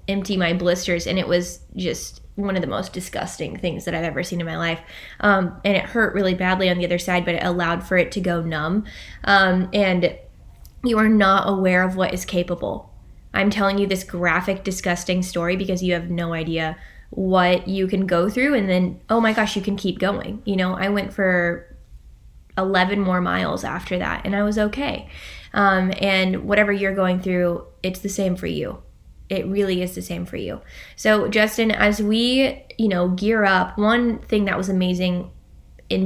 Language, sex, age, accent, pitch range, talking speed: English, female, 10-29, American, 180-210 Hz, 200 wpm